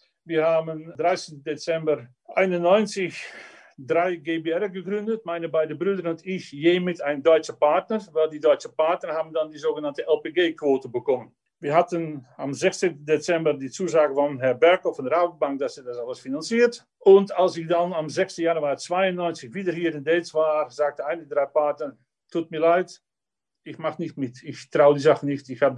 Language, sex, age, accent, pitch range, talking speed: German, male, 50-69, Dutch, 140-180 Hz, 180 wpm